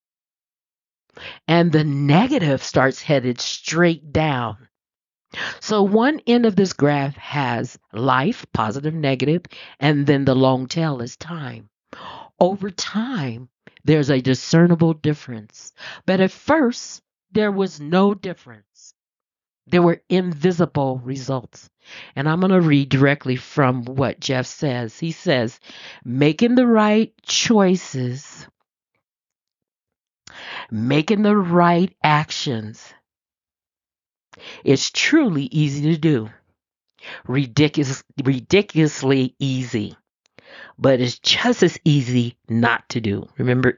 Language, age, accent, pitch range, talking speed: English, 40-59, American, 125-180 Hz, 105 wpm